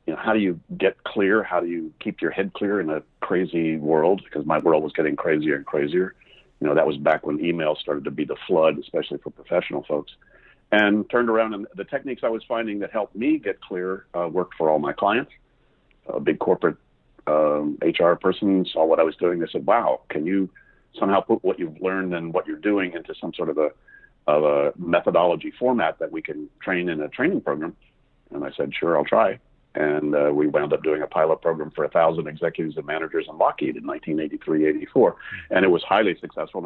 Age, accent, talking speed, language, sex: 50-69, American, 220 wpm, English, male